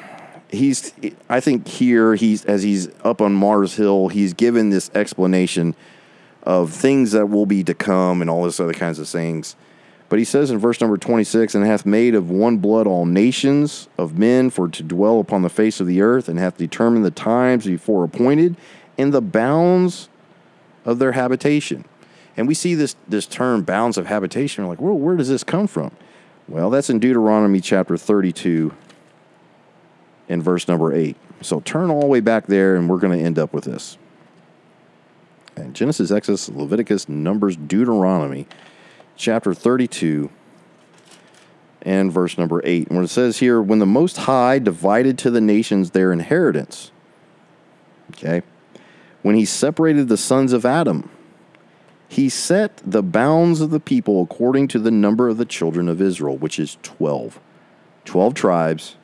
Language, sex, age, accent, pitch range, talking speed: English, male, 40-59, American, 90-125 Hz, 170 wpm